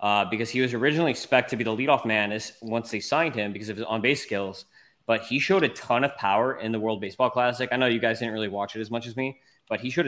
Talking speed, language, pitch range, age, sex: 285 wpm, English, 110-125 Hz, 20-39, male